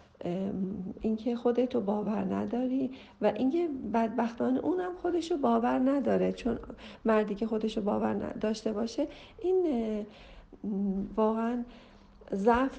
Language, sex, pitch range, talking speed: Persian, female, 215-310 Hz, 105 wpm